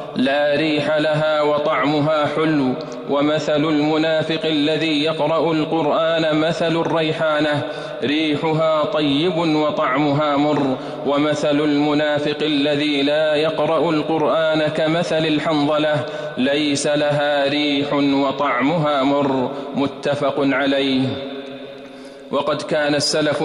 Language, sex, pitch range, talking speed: Arabic, male, 145-155 Hz, 85 wpm